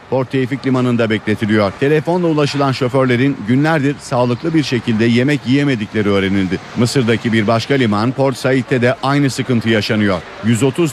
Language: Turkish